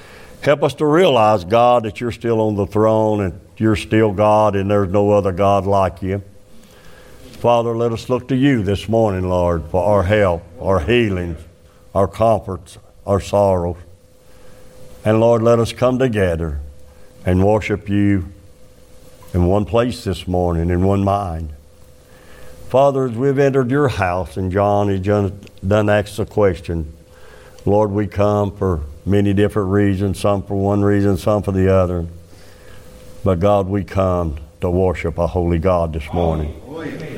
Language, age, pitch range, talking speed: English, 60-79, 90-115 Hz, 155 wpm